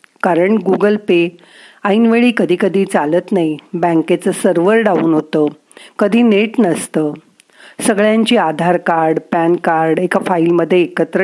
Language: Marathi